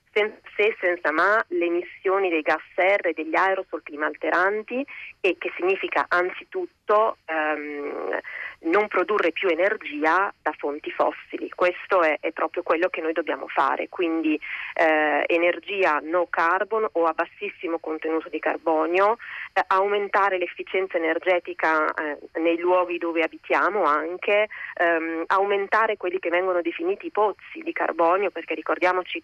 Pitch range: 165-205 Hz